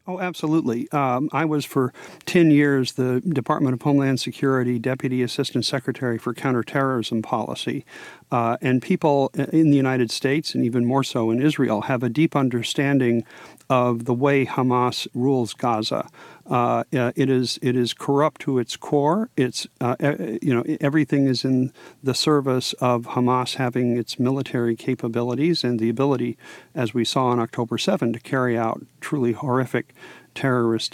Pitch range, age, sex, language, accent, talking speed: 120-140 Hz, 50-69, male, English, American, 155 wpm